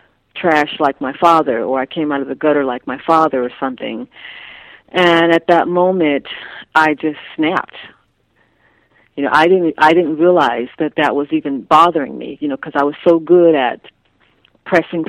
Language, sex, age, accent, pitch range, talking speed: English, female, 40-59, American, 140-165 Hz, 175 wpm